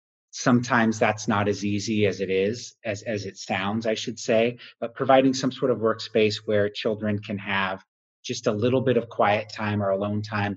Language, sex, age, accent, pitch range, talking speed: English, male, 30-49, American, 100-115 Hz, 200 wpm